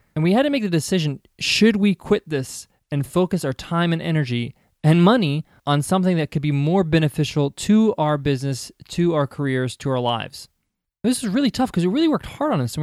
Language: English